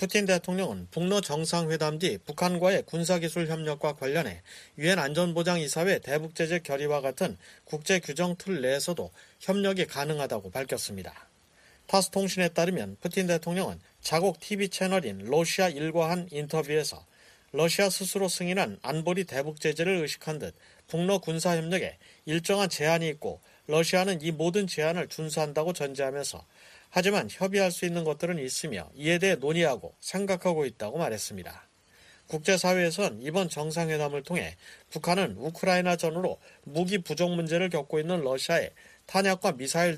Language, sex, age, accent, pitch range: Korean, male, 40-59, native, 150-180 Hz